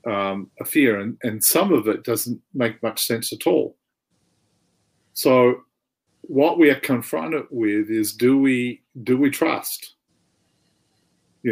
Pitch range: 120-160 Hz